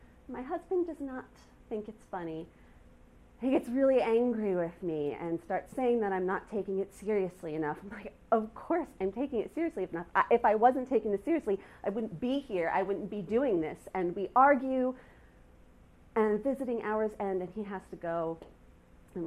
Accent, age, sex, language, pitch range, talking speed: American, 40-59, female, English, 185-245 Hz, 190 wpm